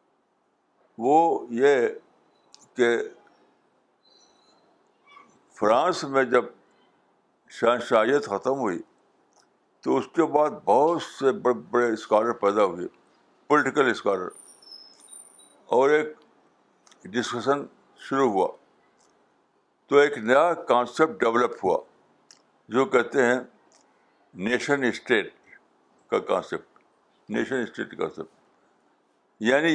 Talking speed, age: 90 wpm, 60-79